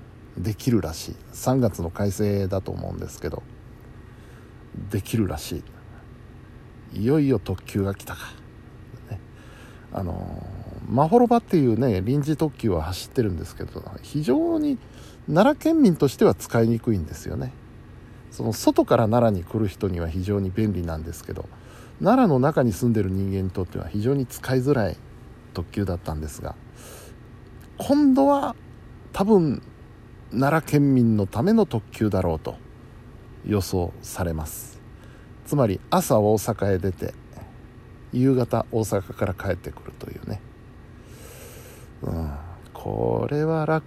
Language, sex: Japanese, male